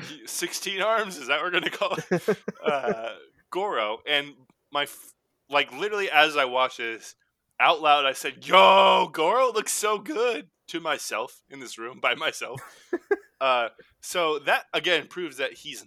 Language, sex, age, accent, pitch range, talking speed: English, male, 20-39, American, 110-155 Hz, 165 wpm